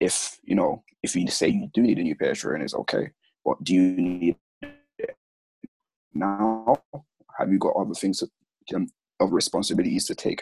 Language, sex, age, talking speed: English, male, 20-39, 175 wpm